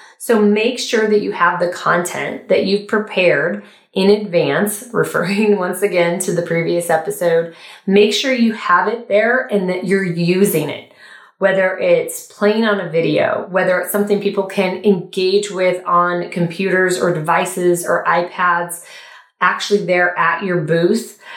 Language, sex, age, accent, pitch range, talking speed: English, female, 20-39, American, 175-215 Hz, 155 wpm